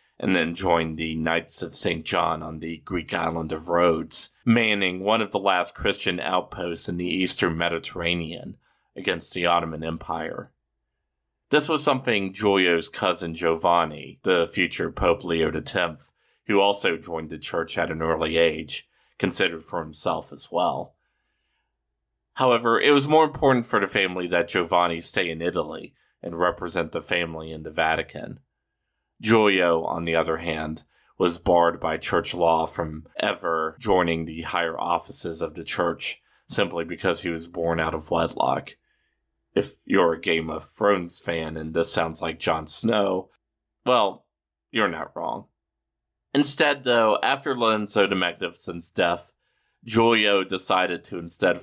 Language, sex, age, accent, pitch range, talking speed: English, male, 40-59, American, 80-95 Hz, 150 wpm